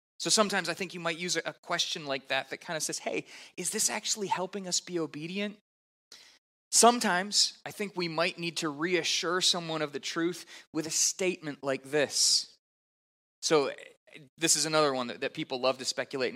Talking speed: 185 wpm